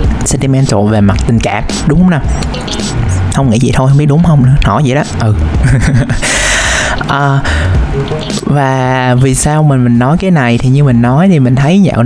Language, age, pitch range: Vietnamese, 20-39, 115-150 Hz